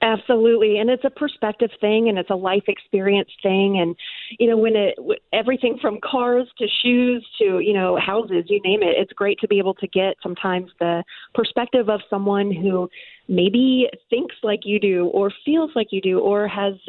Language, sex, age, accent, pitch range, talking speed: English, female, 30-49, American, 185-230 Hz, 190 wpm